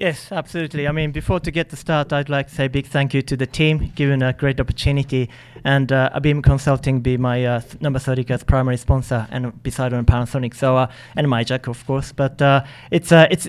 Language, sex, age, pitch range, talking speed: English, male, 30-49, 130-150 Hz, 220 wpm